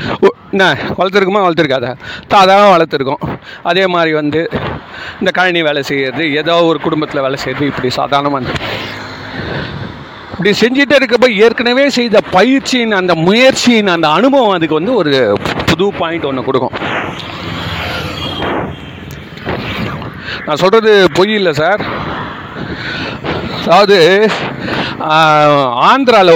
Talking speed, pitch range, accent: 45 wpm, 145-205 Hz, native